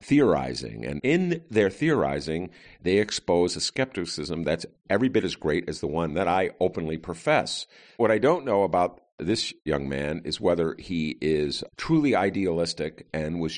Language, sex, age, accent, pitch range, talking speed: English, male, 50-69, American, 75-110 Hz, 165 wpm